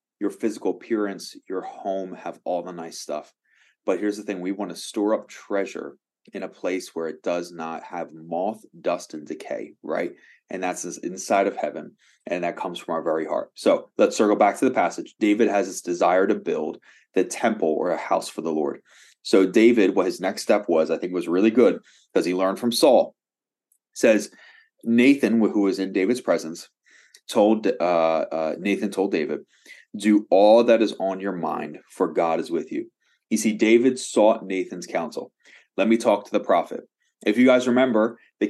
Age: 30-49